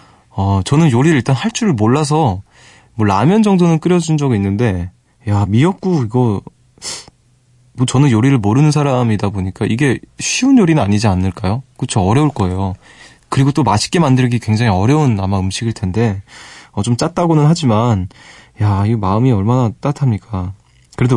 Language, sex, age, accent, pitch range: Korean, male, 20-39, native, 100-130 Hz